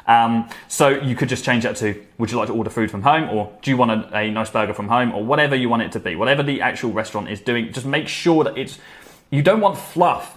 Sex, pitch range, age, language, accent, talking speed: male, 105-140 Hz, 20-39, English, British, 280 wpm